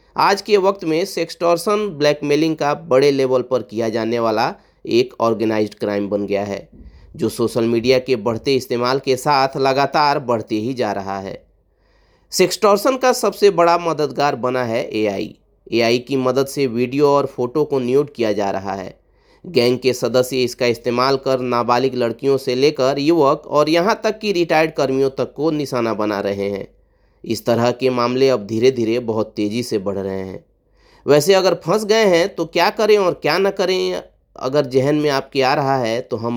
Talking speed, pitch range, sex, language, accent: 185 wpm, 120-155 Hz, male, Hindi, native